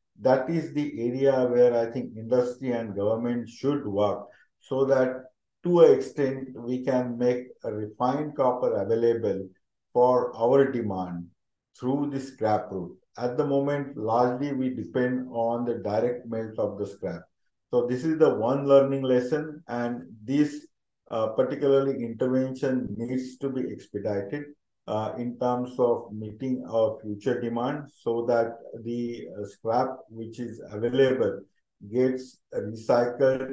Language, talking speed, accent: English, 140 wpm, Indian